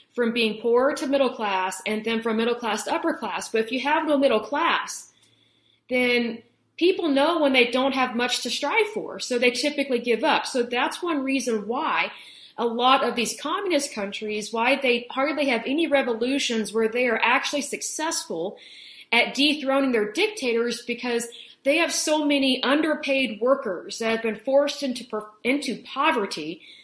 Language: German